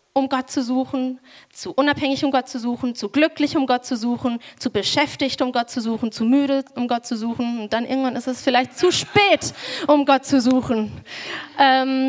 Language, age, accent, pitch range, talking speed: German, 20-39, German, 220-275 Hz, 205 wpm